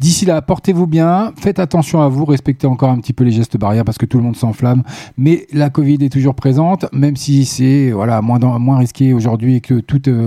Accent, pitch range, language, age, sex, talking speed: French, 130-160 Hz, French, 40-59, male, 235 wpm